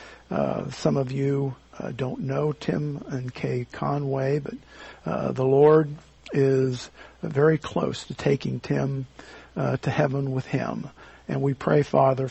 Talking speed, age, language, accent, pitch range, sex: 145 wpm, 50-69, English, American, 130-150 Hz, male